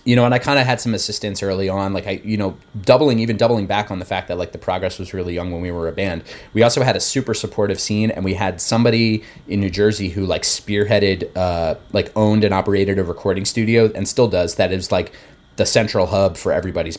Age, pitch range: 30-49, 95-115 Hz